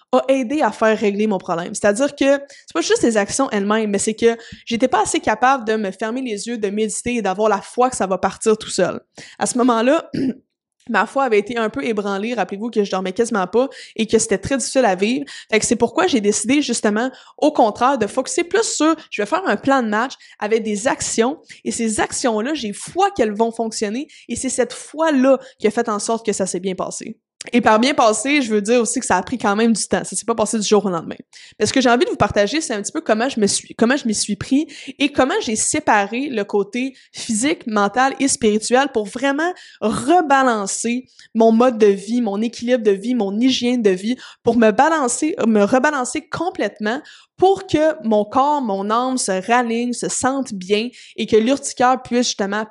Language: French